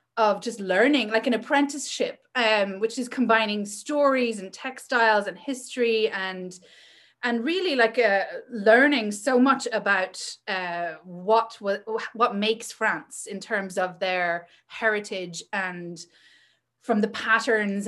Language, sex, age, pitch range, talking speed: English, female, 30-49, 200-255 Hz, 130 wpm